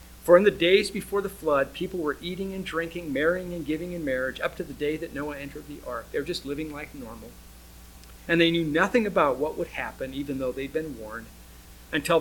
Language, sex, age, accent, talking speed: English, male, 50-69, American, 225 wpm